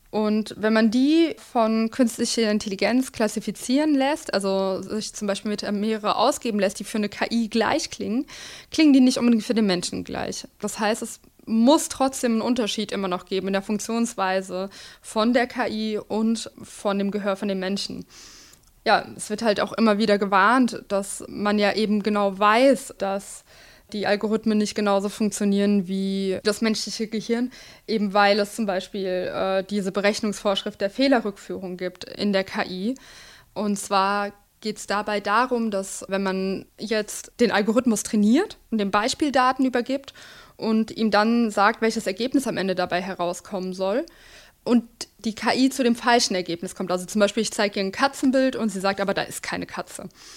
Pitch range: 200-235 Hz